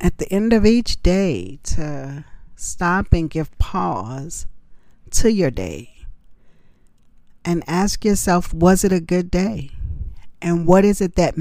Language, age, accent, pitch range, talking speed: English, 40-59, American, 135-170 Hz, 140 wpm